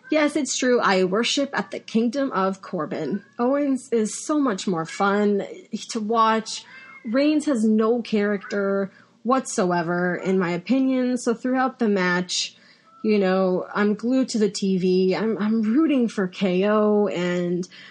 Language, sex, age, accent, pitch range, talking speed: English, female, 30-49, American, 185-225 Hz, 145 wpm